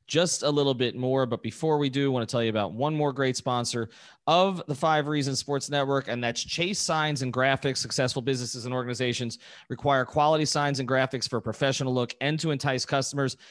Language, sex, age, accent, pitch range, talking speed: English, male, 30-49, American, 120-150 Hz, 215 wpm